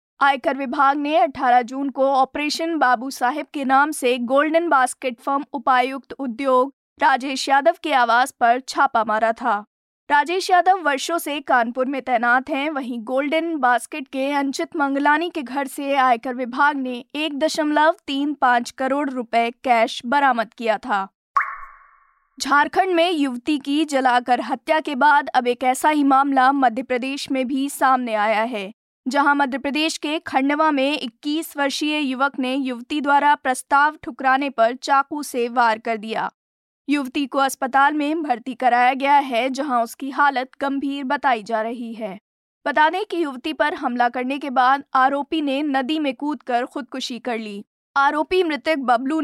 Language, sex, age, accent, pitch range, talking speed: Hindi, female, 20-39, native, 250-295 Hz, 160 wpm